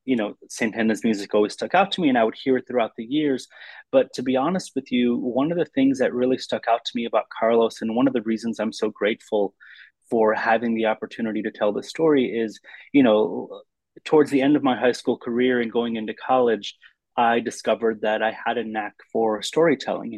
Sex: male